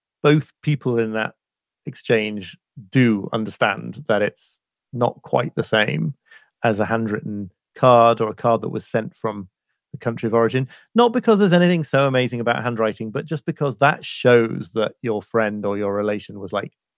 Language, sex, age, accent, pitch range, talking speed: English, male, 30-49, British, 110-140 Hz, 175 wpm